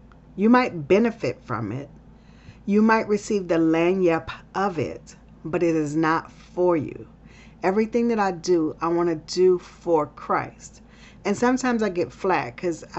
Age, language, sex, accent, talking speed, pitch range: 40-59, English, female, American, 155 wpm, 170-210 Hz